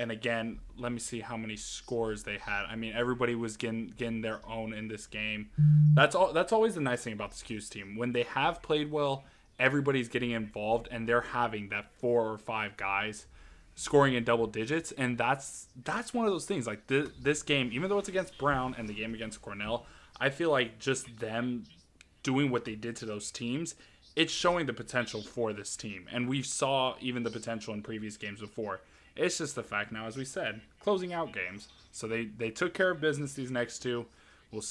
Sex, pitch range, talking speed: male, 110-140 Hz, 215 wpm